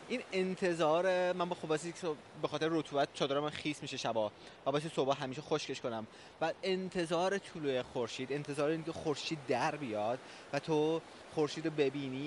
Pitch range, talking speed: 135-165 Hz, 155 wpm